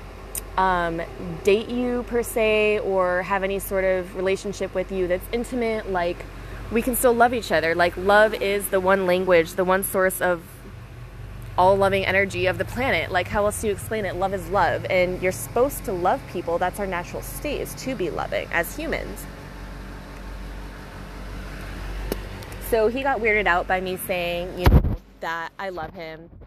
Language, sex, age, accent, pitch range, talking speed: English, female, 20-39, American, 175-205 Hz, 175 wpm